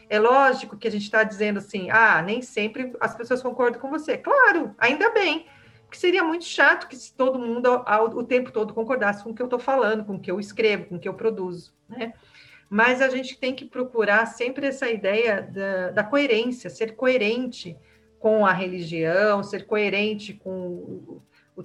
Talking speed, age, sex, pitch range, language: 190 wpm, 40-59, female, 195-250 Hz, Portuguese